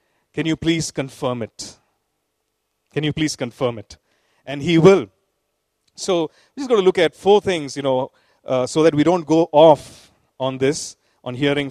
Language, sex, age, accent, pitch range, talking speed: English, male, 40-59, Indian, 135-180 Hz, 180 wpm